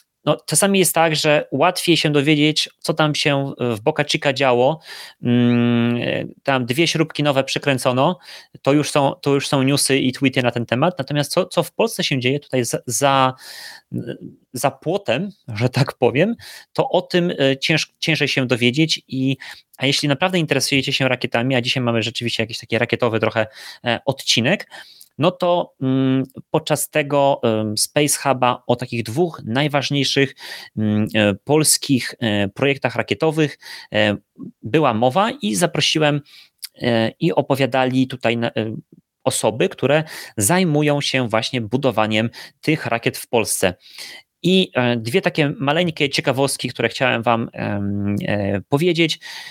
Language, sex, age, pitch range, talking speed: Polish, male, 30-49, 120-155 Hz, 130 wpm